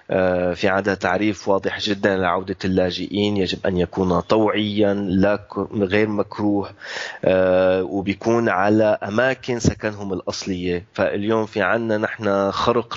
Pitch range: 95-110 Hz